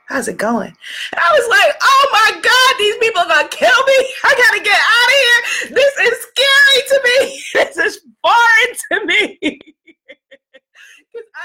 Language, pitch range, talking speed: English, 280-415 Hz, 170 wpm